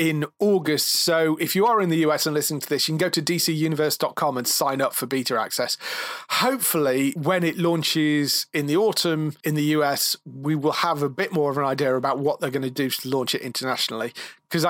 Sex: male